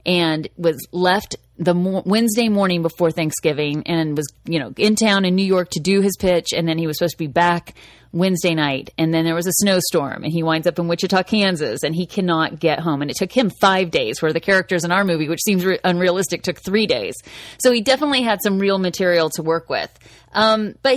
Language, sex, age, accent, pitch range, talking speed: English, female, 30-49, American, 165-215 Hz, 230 wpm